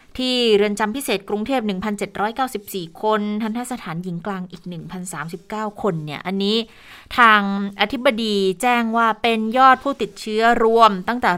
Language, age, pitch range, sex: Thai, 20-39, 180-220 Hz, female